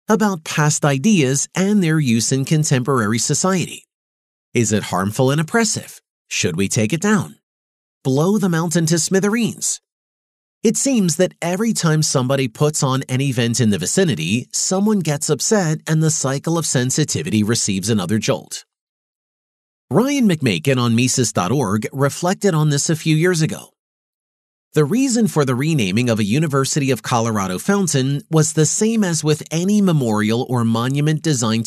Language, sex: English, male